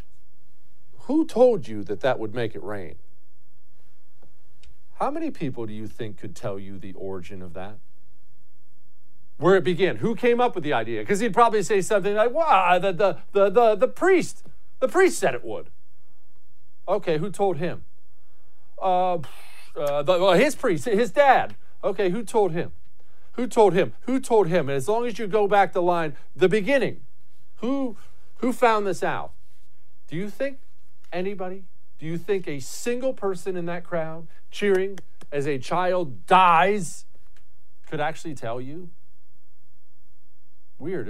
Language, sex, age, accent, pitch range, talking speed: English, male, 50-69, American, 135-205 Hz, 160 wpm